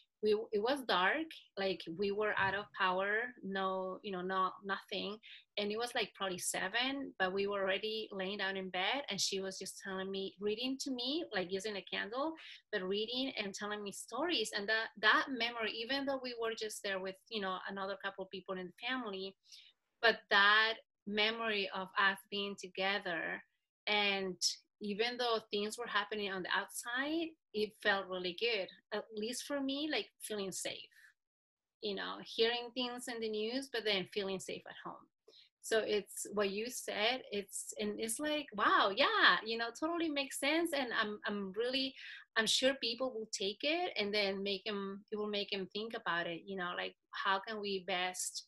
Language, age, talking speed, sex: English, 30-49, 190 wpm, female